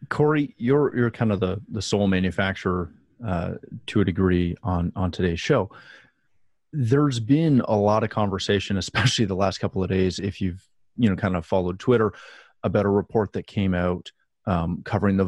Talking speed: 180 wpm